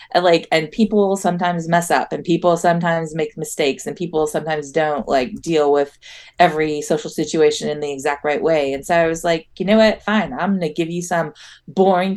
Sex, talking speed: female, 200 wpm